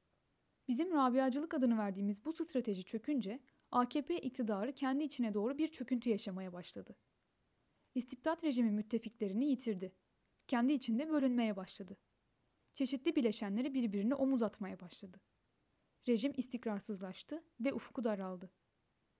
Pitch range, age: 220-280 Hz, 10-29